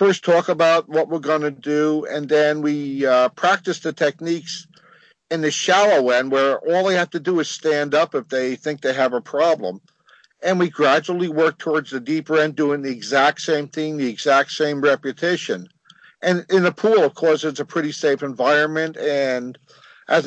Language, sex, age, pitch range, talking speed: English, male, 50-69, 145-165 Hz, 190 wpm